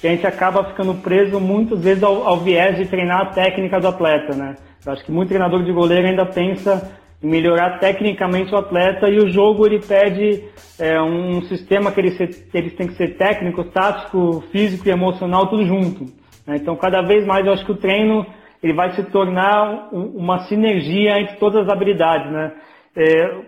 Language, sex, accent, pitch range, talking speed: Portuguese, male, Brazilian, 175-210 Hz, 195 wpm